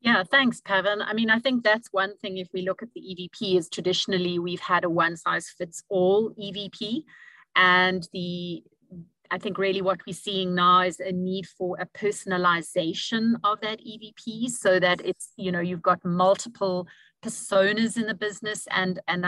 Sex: female